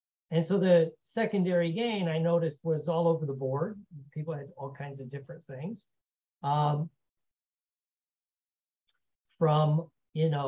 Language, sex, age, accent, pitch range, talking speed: English, male, 50-69, American, 145-190 Hz, 130 wpm